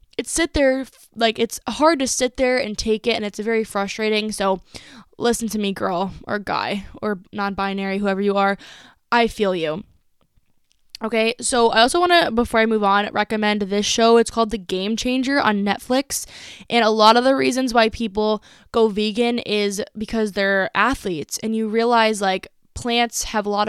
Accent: American